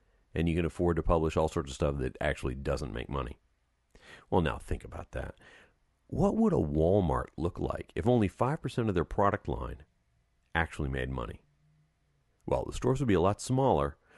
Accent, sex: American, male